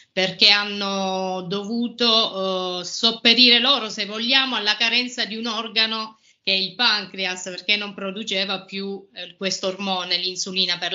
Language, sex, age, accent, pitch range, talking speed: Italian, female, 30-49, native, 185-220 Hz, 145 wpm